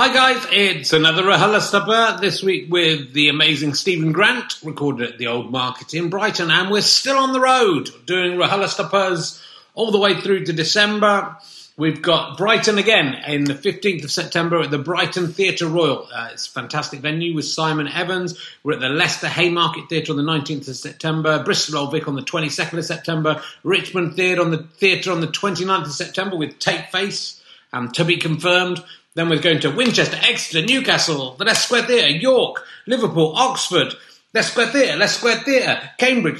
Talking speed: 185 wpm